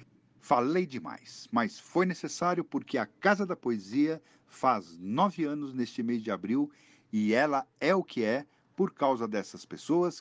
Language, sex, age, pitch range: Portuguese, male, 50-69, 110-185 Hz